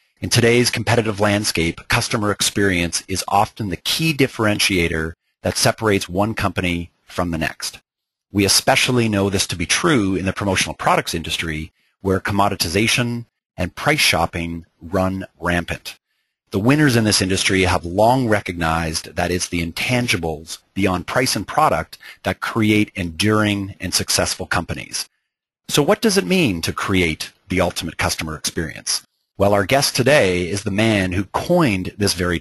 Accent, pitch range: American, 90-110 Hz